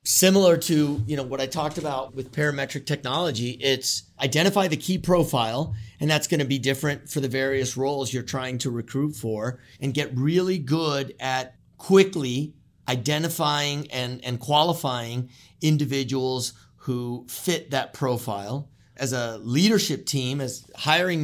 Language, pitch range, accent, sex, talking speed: English, 120-145 Hz, American, male, 145 wpm